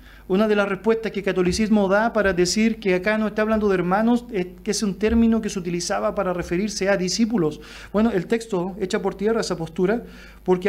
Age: 40-59